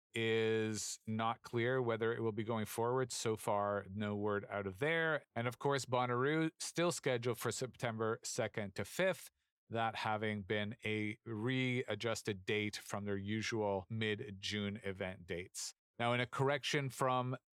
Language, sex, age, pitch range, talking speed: English, male, 40-59, 110-130 Hz, 150 wpm